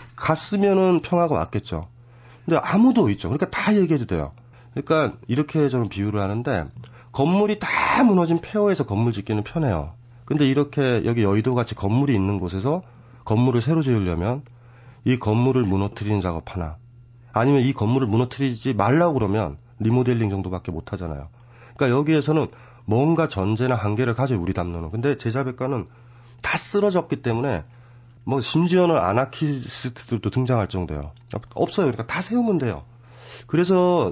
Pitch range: 100-135 Hz